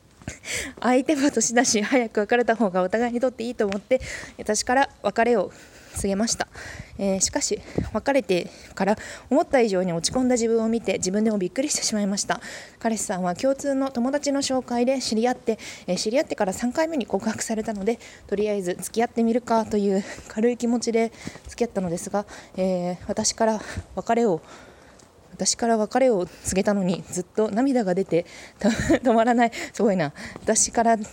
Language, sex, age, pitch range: Japanese, female, 20-39, 200-245 Hz